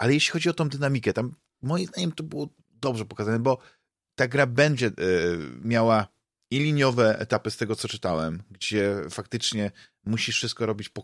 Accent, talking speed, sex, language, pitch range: native, 165 wpm, male, Polish, 105-120 Hz